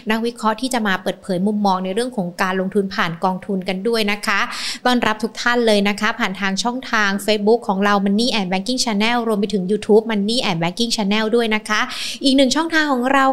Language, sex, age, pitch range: Thai, female, 20-39, 195-240 Hz